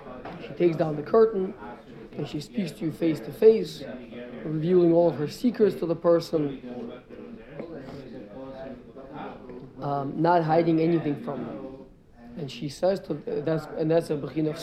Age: 50-69